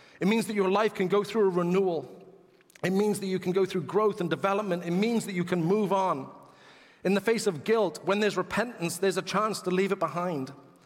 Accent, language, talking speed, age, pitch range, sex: British, English, 230 wpm, 40-59, 155-200 Hz, male